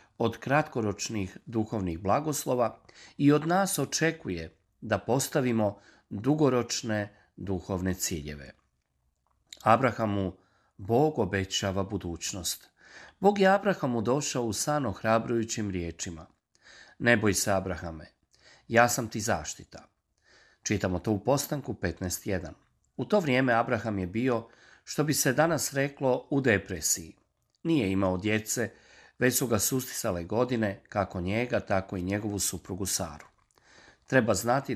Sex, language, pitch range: male, Croatian, 95-135 Hz